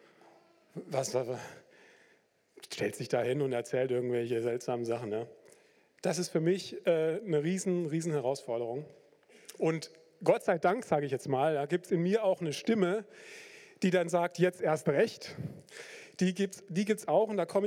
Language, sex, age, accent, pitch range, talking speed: German, male, 40-59, German, 155-210 Hz, 180 wpm